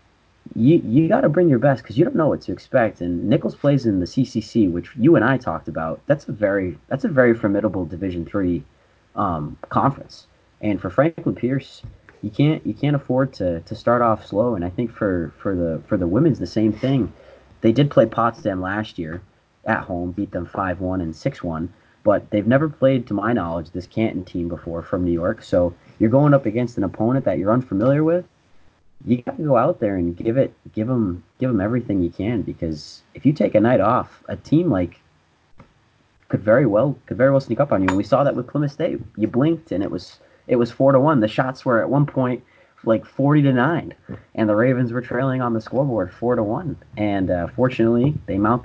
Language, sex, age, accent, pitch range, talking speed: English, male, 30-49, American, 90-125 Hz, 225 wpm